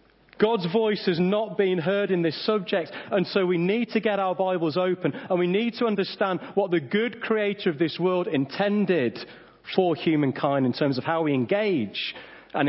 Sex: male